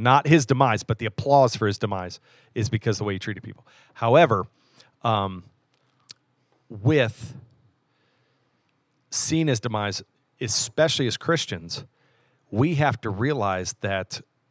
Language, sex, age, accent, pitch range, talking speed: English, male, 40-59, American, 110-135 Hz, 130 wpm